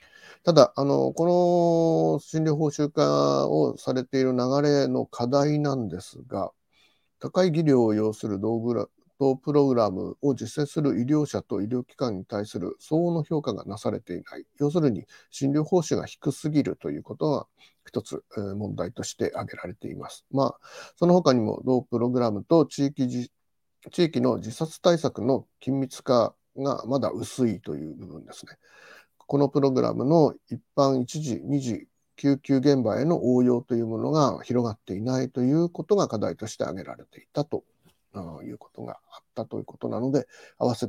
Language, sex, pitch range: Japanese, male, 110-150 Hz